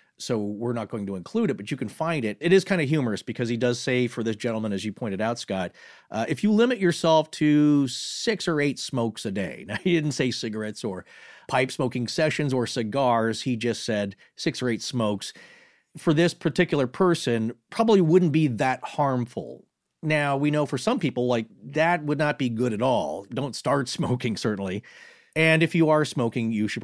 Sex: male